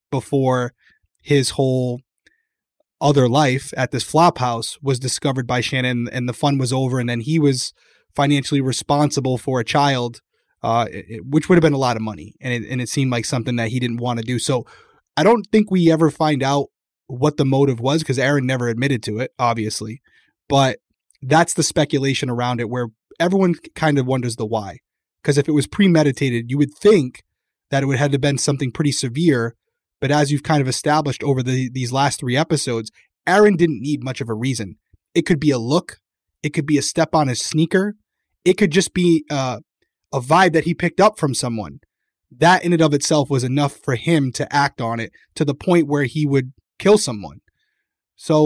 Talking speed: 200 wpm